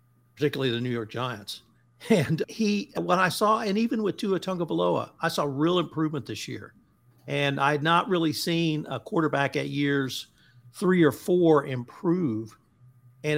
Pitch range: 125-155 Hz